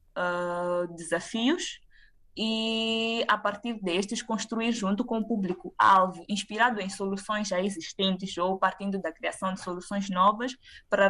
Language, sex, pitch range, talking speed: Portuguese, female, 185-215 Hz, 130 wpm